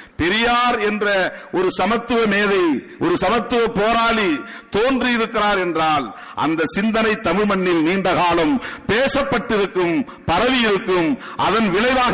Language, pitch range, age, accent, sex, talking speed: Tamil, 150-225 Hz, 50-69, native, male, 100 wpm